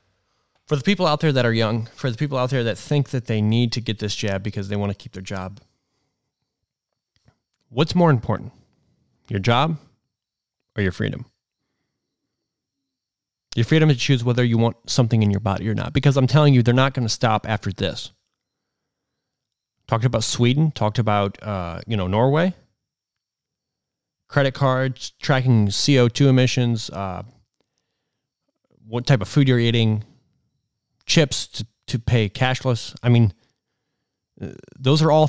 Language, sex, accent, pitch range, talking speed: English, male, American, 110-135 Hz, 155 wpm